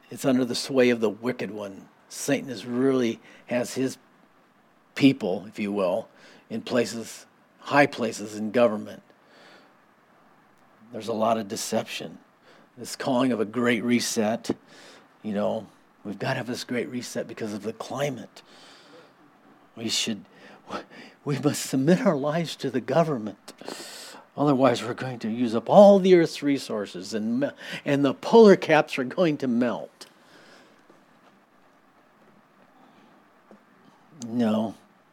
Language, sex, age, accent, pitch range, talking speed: English, male, 50-69, American, 115-145 Hz, 130 wpm